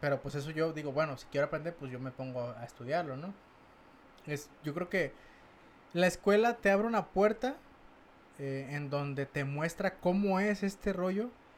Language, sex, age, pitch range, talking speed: Spanish, male, 20-39, 130-165 Hz, 180 wpm